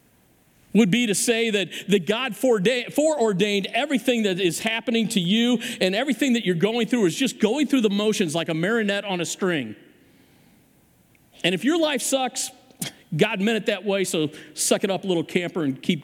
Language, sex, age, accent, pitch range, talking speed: English, male, 40-59, American, 165-225 Hz, 185 wpm